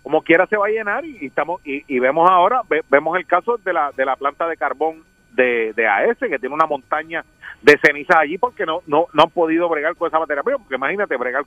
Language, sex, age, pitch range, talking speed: Spanish, male, 40-59, 155-200 Hz, 245 wpm